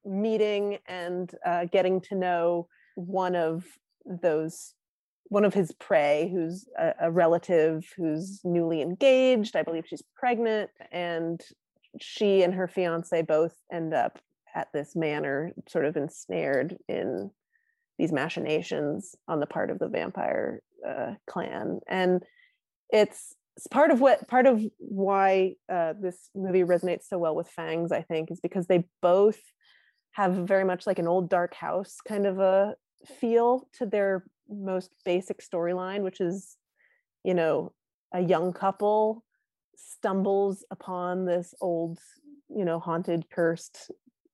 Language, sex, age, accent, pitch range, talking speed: English, female, 30-49, American, 165-205 Hz, 140 wpm